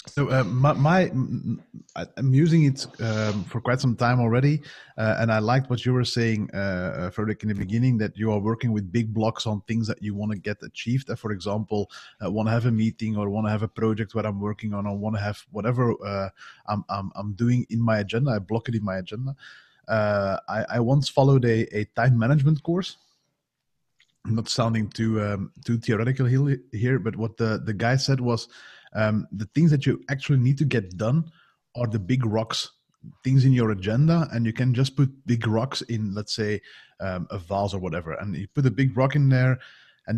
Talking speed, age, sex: 220 wpm, 20-39, male